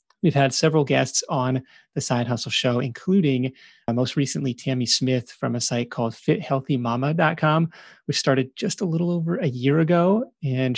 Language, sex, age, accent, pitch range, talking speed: English, male, 30-49, American, 125-155 Hz, 165 wpm